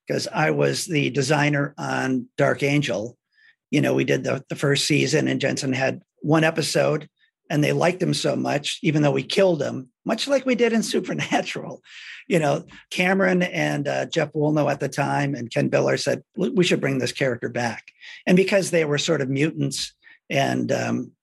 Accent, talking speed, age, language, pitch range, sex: American, 190 wpm, 50-69, English, 135-180 Hz, male